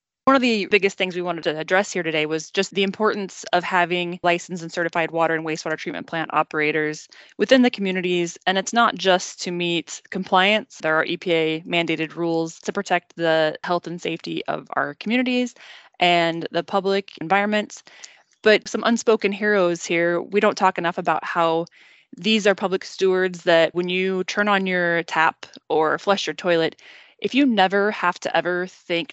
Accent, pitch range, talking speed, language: American, 165-200 Hz, 180 wpm, English